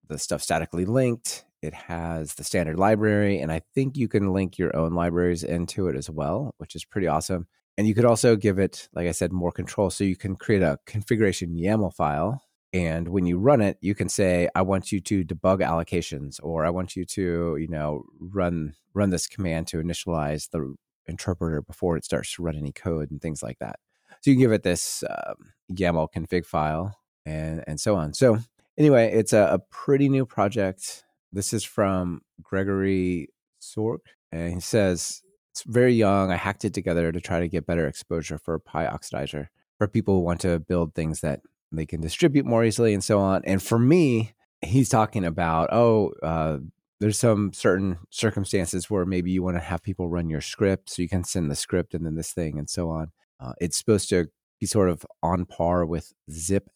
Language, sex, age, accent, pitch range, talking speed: English, male, 30-49, American, 80-100 Hz, 205 wpm